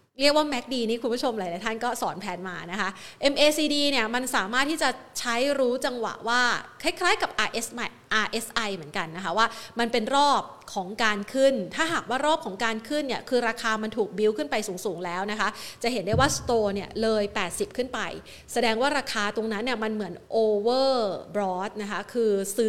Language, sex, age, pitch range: Thai, female, 30-49, 200-260 Hz